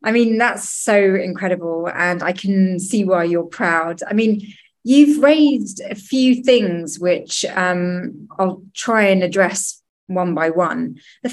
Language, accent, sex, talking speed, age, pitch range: English, British, female, 155 wpm, 20-39, 175-210 Hz